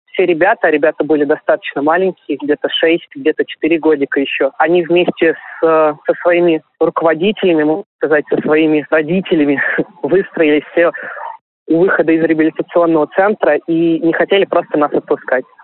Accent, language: native, Russian